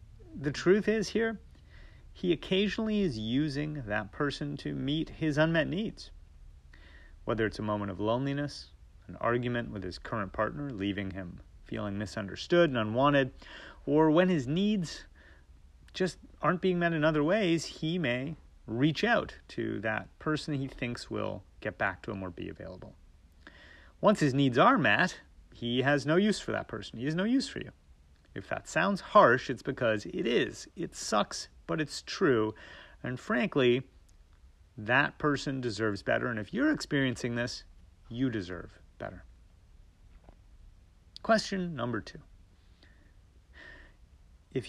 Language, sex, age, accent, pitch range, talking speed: English, male, 30-49, American, 90-150 Hz, 150 wpm